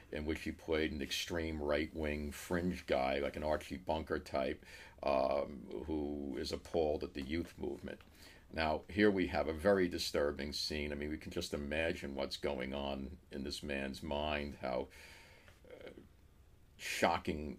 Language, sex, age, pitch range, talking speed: English, male, 50-69, 75-90 Hz, 155 wpm